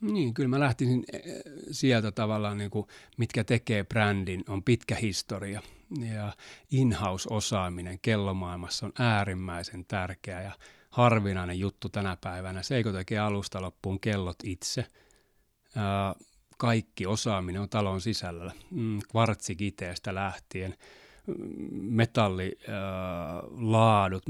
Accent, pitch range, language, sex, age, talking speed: native, 95-110 Hz, Finnish, male, 30-49, 95 wpm